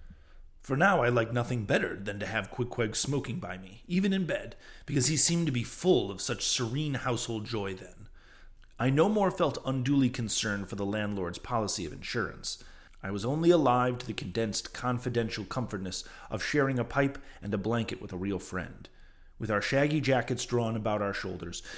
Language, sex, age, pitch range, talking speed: English, male, 30-49, 100-125 Hz, 185 wpm